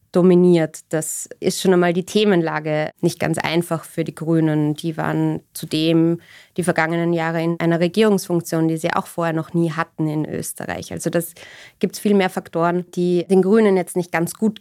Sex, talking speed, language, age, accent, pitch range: female, 185 wpm, German, 20-39, German, 165-195 Hz